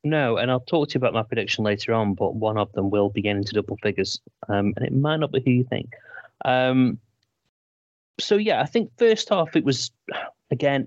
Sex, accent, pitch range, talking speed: male, British, 105-125 Hz, 220 wpm